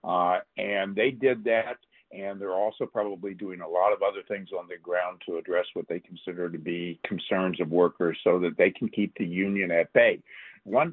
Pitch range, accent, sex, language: 90-110 Hz, American, male, English